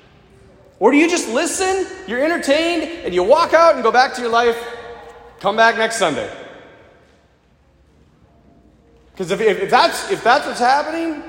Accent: American